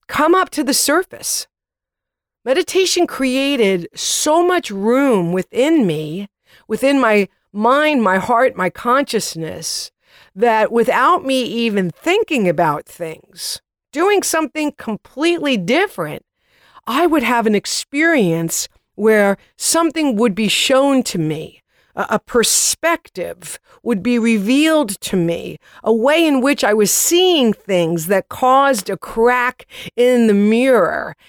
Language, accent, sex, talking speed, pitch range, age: English, American, female, 125 wpm, 205-285 Hz, 50-69